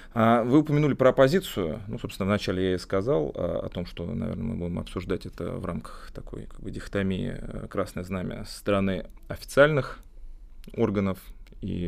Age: 30-49